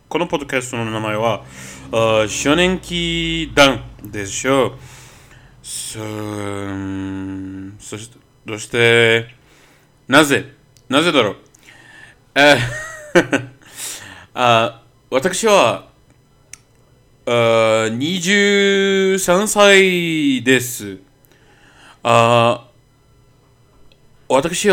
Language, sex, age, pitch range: Japanese, male, 40-59, 120-160 Hz